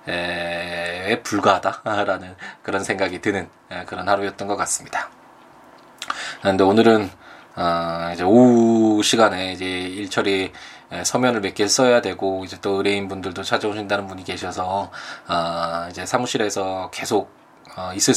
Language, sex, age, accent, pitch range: Korean, male, 20-39, native, 90-105 Hz